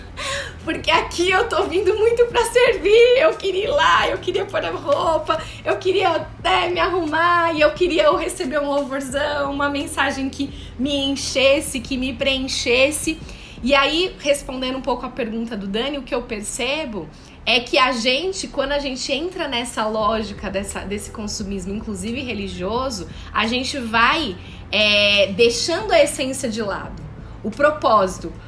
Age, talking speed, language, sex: 20-39, 155 wpm, Portuguese, female